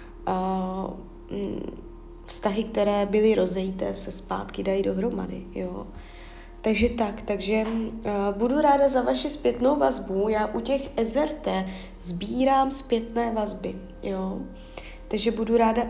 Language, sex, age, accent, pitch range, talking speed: Czech, female, 20-39, native, 200-245 Hz, 115 wpm